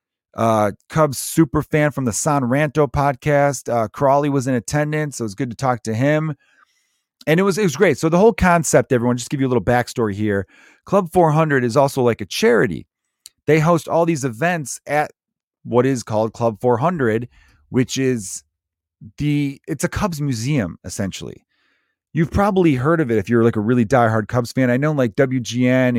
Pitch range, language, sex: 115-150 Hz, English, male